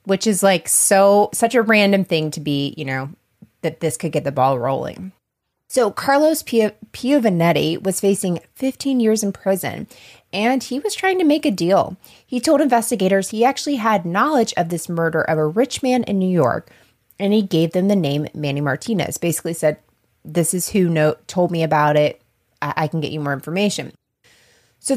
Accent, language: American, English